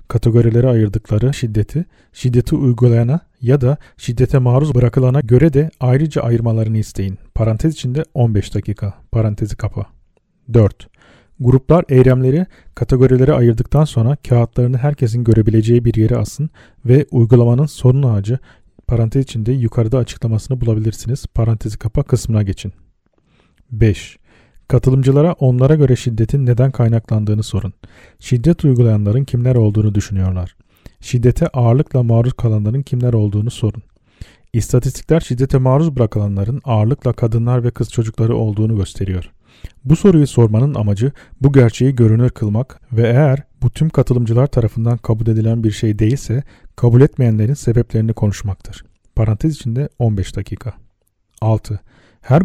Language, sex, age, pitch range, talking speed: Turkish, male, 40-59, 110-130 Hz, 120 wpm